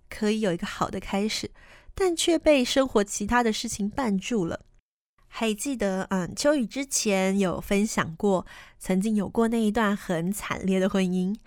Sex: female